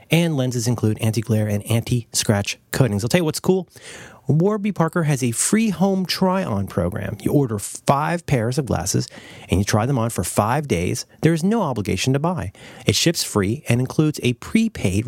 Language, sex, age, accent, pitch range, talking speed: English, male, 30-49, American, 110-155 Hz, 185 wpm